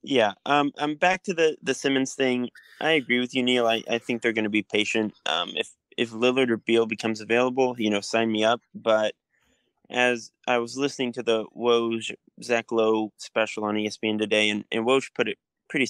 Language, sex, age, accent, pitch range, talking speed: English, male, 20-39, American, 110-130 Hz, 210 wpm